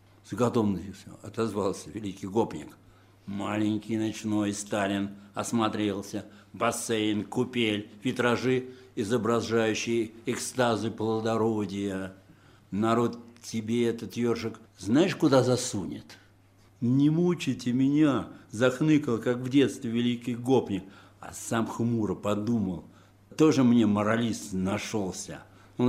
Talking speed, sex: 95 wpm, male